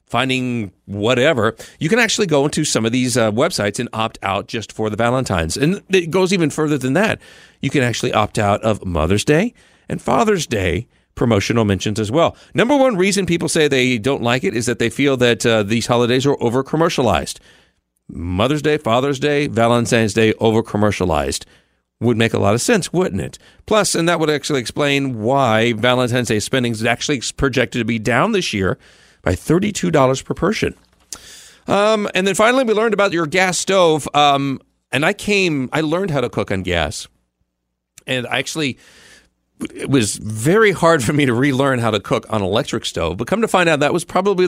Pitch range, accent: 115-165 Hz, American